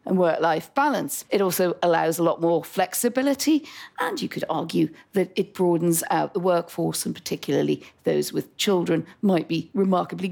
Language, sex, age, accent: English, female, 40-59, British